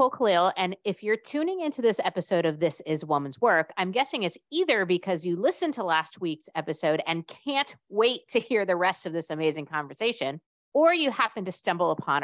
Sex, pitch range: female, 140-195 Hz